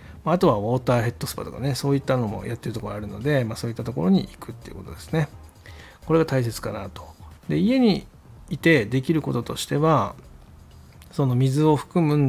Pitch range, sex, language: 105-140 Hz, male, Japanese